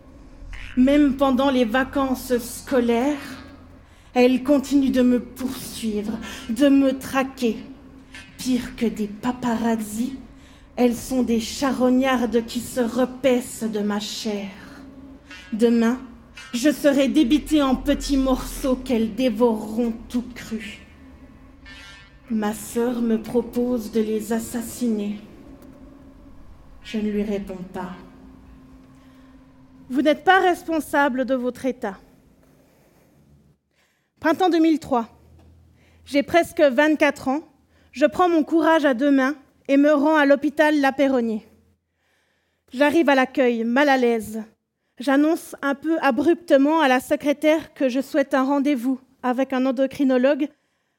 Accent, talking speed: French, 115 wpm